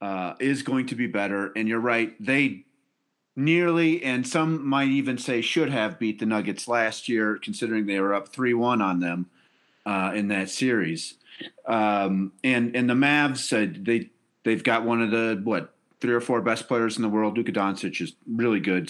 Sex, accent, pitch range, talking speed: male, American, 110-150 Hz, 190 wpm